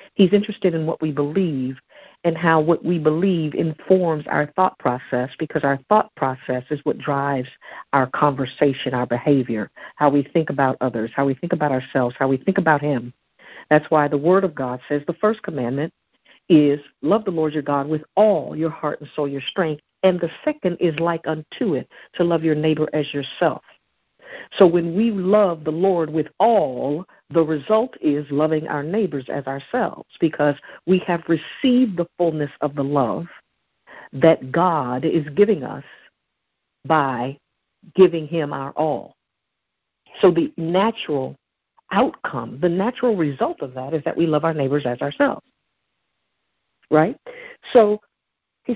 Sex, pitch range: female, 140-185 Hz